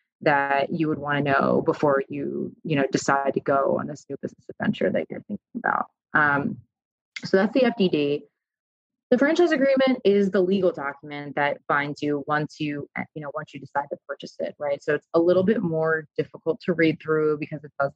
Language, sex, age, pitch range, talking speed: English, female, 20-39, 145-165 Hz, 205 wpm